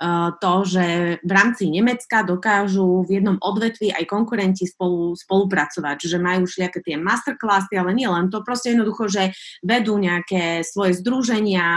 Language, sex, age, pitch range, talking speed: Slovak, female, 20-39, 185-220 Hz, 150 wpm